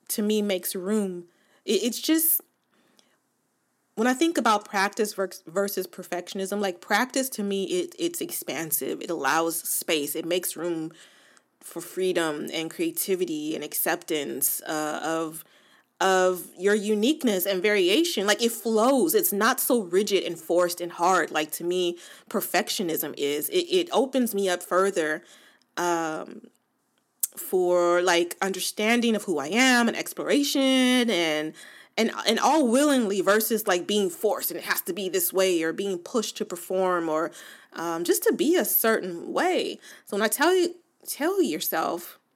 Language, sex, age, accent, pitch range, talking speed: English, female, 20-39, American, 175-235 Hz, 150 wpm